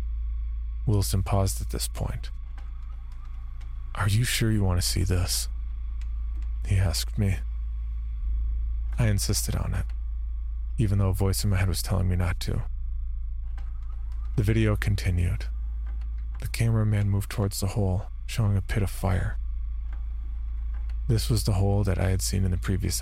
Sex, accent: male, American